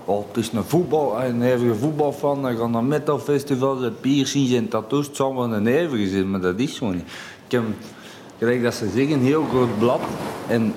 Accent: Dutch